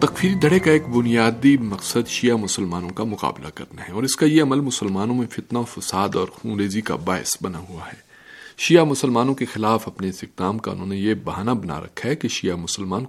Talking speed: 200 wpm